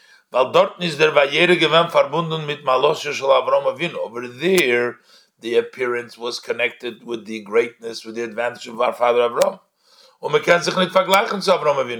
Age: 50-69